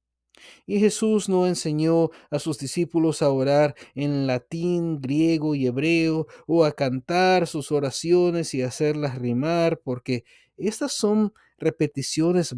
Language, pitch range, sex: Spanish, 120-165 Hz, male